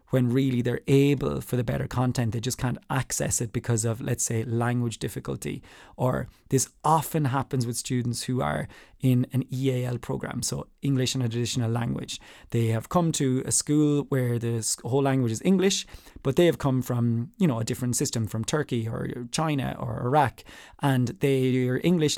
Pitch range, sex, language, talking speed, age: 120-150 Hz, male, English, 185 wpm, 20-39